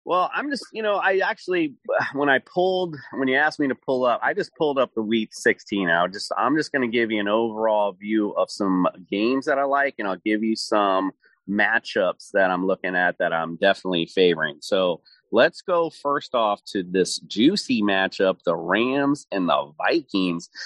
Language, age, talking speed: English, 30-49, 195 wpm